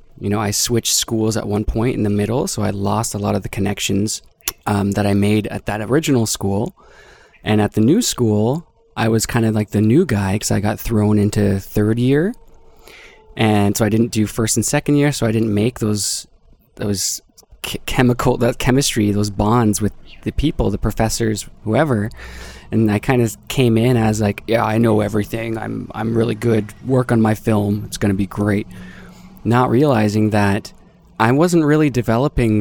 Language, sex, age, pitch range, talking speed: English, male, 20-39, 105-120 Hz, 195 wpm